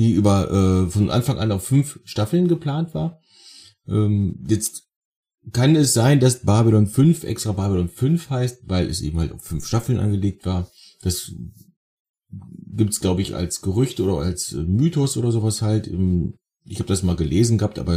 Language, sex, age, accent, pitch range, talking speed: German, male, 30-49, German, 90-105 Hz, 175 wpm